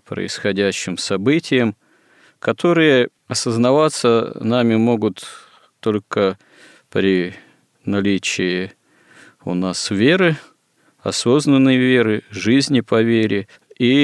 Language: Russian